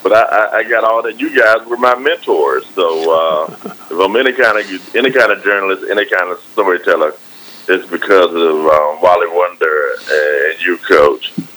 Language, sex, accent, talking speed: English, male, American, 180 wpm